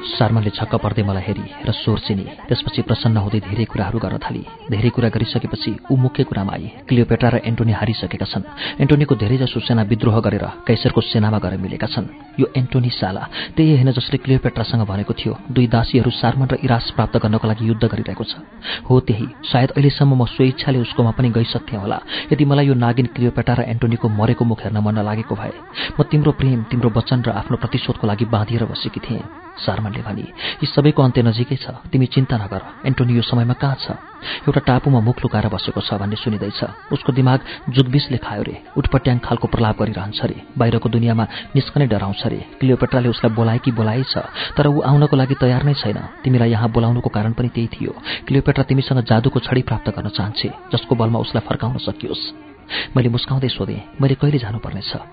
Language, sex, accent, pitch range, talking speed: English, male, Indian, 110-135 Hz, 65 wpm